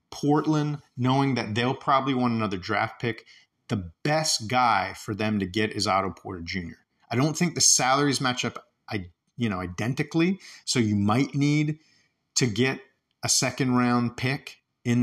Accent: American